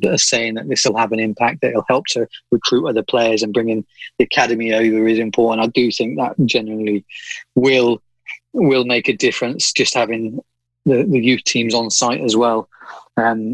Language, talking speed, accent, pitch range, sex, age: English, 195 wpm, British, 110-140 Hz, male, 30-49